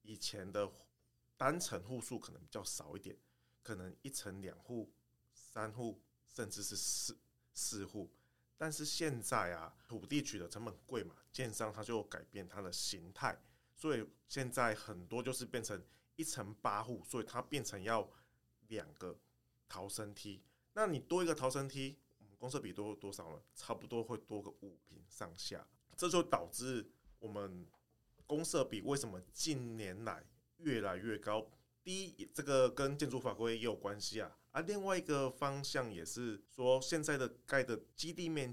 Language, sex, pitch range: Chinese, male, 105-135 Hz